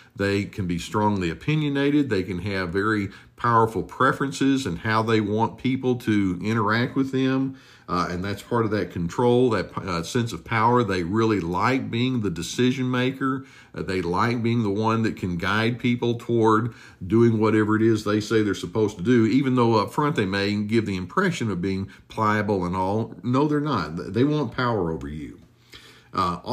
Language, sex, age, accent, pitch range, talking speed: English, male, 50-69, American, 100-130 Hz, 190 wpm